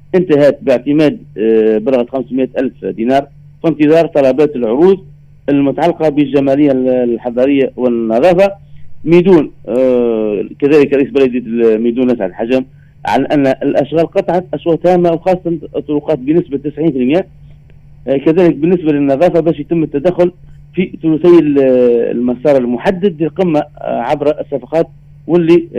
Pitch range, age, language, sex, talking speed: 135-170 Hz, 40-59, Arabic, male, 100 wpm